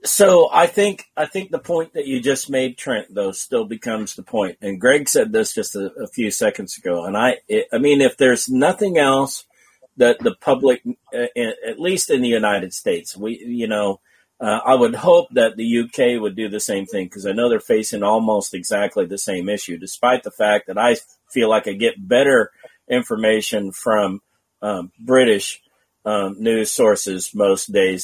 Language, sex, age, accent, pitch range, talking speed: English, male, 40-59, American, 105-135 Hz, 195 wpm